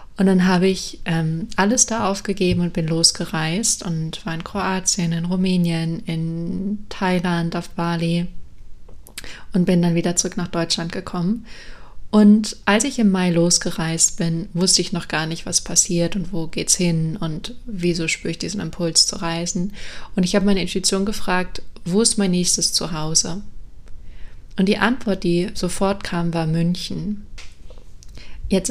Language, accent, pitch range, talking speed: German, German, 170-195 Hz, 155 wpm